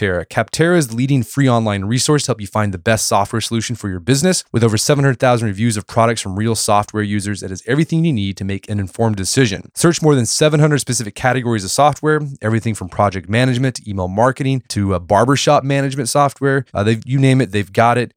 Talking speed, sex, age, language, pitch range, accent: 210 wpm, male, 20-39, English, 105-135 Hz, American